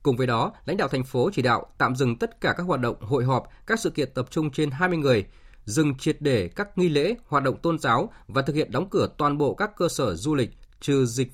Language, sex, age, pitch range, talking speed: Vietnamese, male, 20-39, 120-155 Hz, 265 wpm